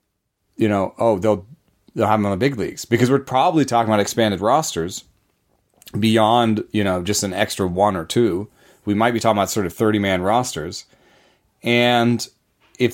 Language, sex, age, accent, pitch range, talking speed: English, male, 30-49, American, 105-130 Hz, 175 wpm